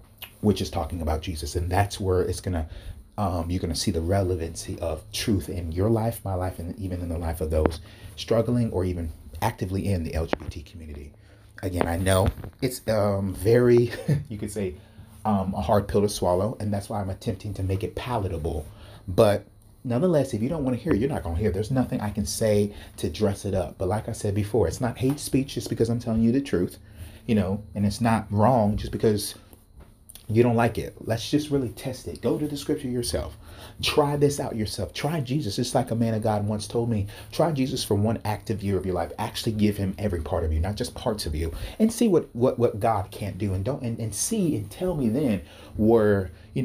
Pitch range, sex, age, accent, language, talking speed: 95-115 Hz, male, 30-49, American, English, 230 wpm